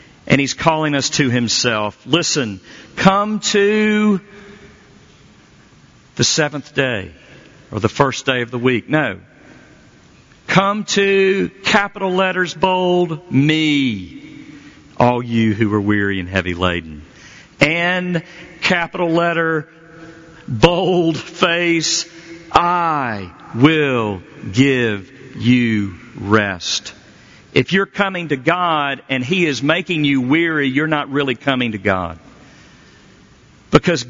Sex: male